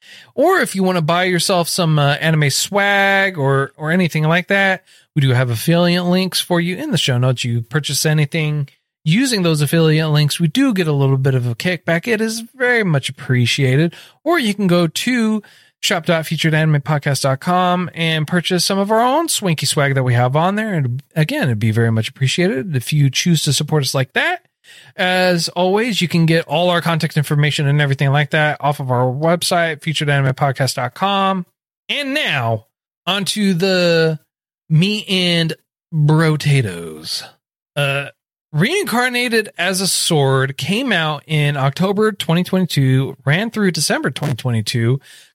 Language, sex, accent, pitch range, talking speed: English, male, American, 140-185 Hz, 160 wpm